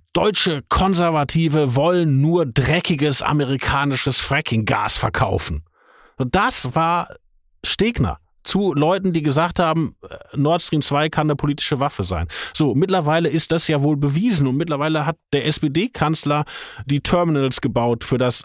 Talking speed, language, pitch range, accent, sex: 135 wpm, German, 135-175 Hz, German, male